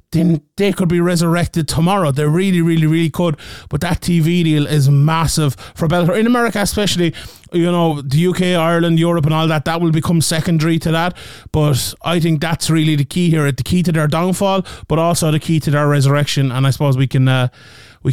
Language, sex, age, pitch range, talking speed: English, male, 30-49, 150-185 Hz, 210 wpm